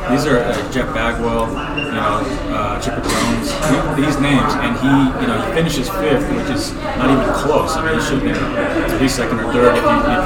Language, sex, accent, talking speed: English, male, American, 210 wpm